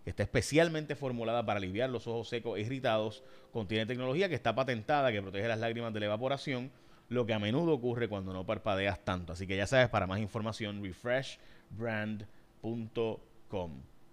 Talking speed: 165 wpm